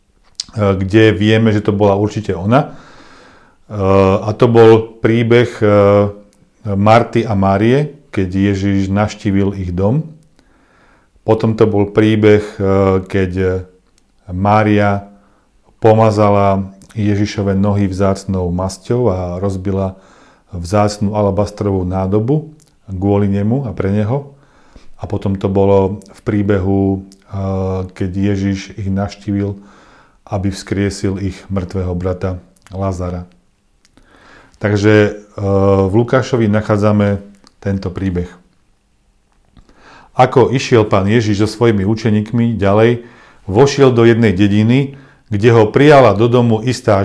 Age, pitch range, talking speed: 40-59, 95-115 Hz, 100 wpm